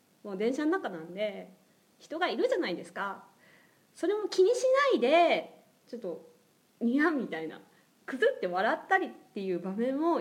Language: Japanese